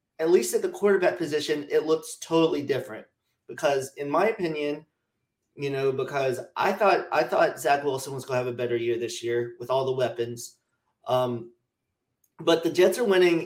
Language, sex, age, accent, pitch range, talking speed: English, male, 30-49, American, 125-160 Hz, 185 wpm